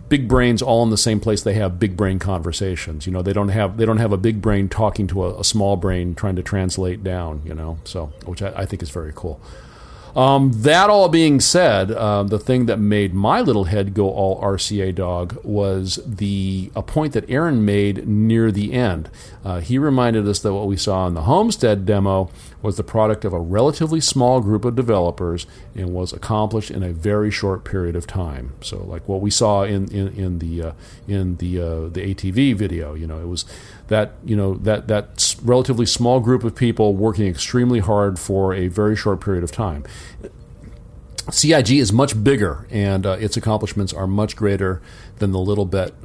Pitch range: 95-110 Hz